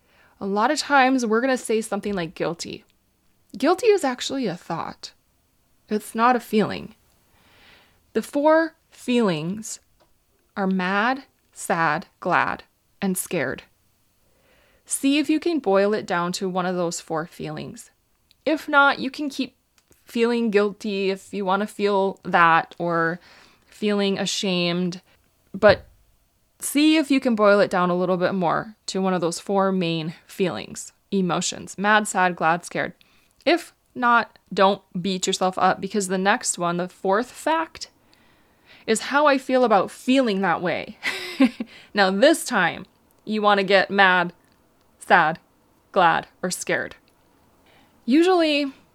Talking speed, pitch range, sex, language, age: 140 wpm, 185-250 Hz, female, English, 20-39